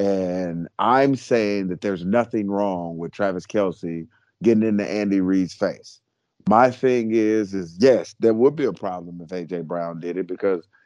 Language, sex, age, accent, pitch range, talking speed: English, male, 30-49, American, 105-130 Hz, 170 wpm